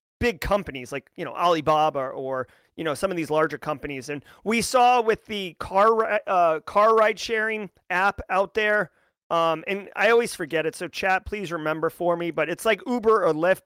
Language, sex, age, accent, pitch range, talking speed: English, male, 30-49, American, 170-225 Hz, 200 wpm